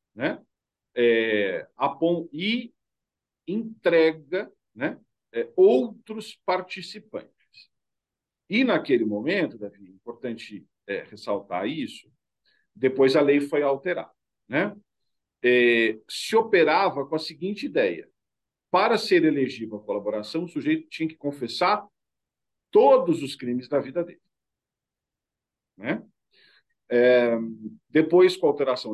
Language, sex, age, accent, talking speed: Portuguese, male, 50-69, Brazilian, 105 wpm